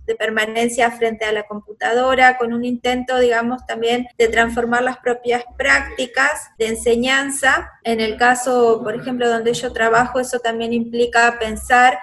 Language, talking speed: Portuguese, 150 wpm